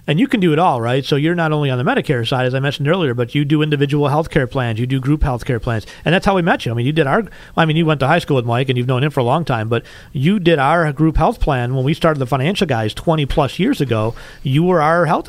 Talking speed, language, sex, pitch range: 320 wpm, English, male, 125-155 Hz